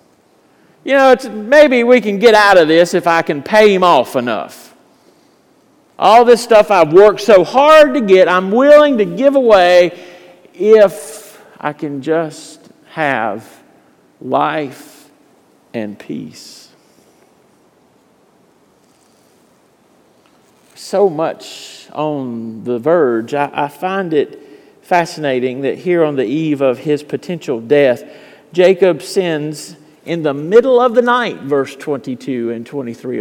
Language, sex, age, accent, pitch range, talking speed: English, male, 50-69, American, 155-235 Hz, 125 wpm